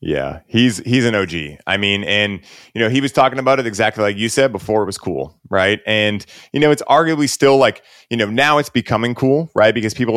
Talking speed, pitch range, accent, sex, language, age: 235 wpm, 105-135 Hz, American, male, English, 30-49